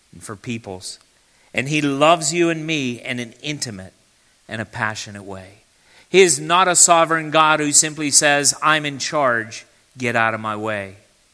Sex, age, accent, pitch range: male, 50-69, American, 105-150 Hz